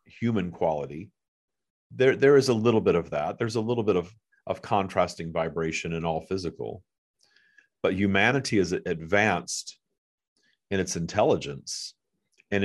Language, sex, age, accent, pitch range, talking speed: English, male, 50-69, American, 85-105 Hz, 140 wpm